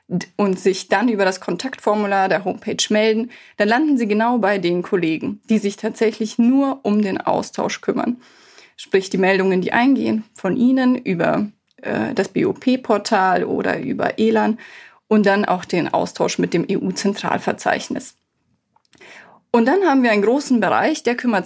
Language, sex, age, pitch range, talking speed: German, female, 30-49, 195-235 Hz, 155 wpm